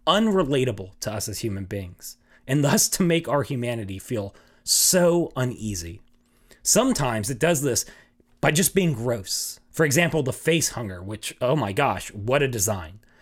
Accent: American